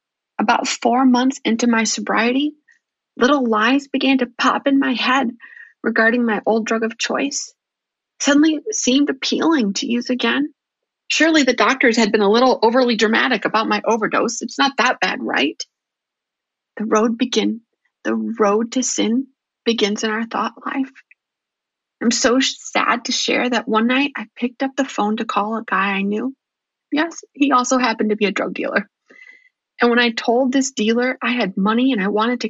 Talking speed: 180 wpm